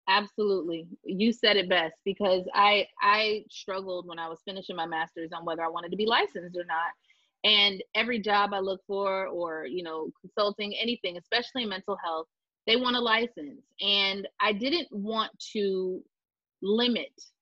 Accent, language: American, English